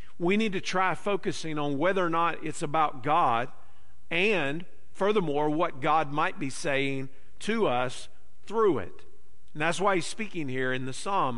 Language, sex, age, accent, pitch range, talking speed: English, male, 50-69, American, 130-165 Hz, 170 wpm